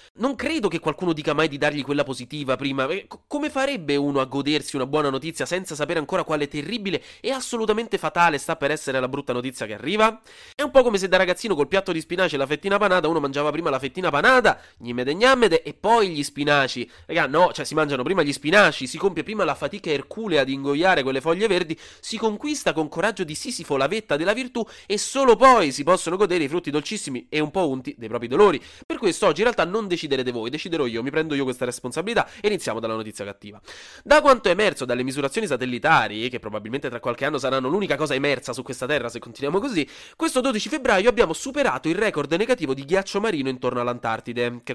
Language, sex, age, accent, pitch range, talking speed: Italian, male, 30-49, native, 130-200 Hz, 220 wpm